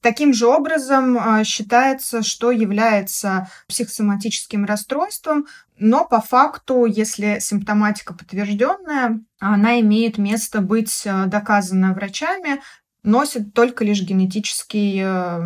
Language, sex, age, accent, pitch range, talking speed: Russian, female, 20-39, native, 200-255 Hz, 95 wpm